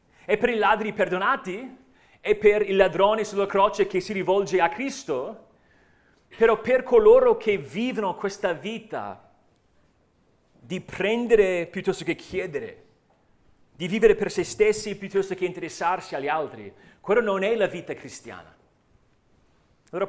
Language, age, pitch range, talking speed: Italian, 40-59, 170-215 Hz, 135 wpm